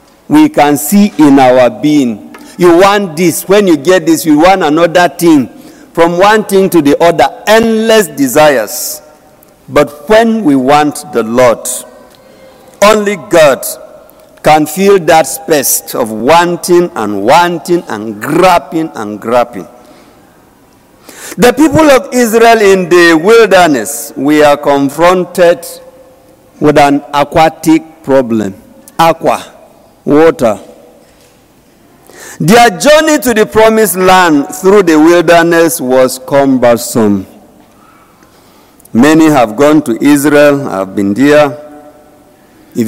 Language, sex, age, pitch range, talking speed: English, male, 50-69, 145-205 Hz, 115 wpm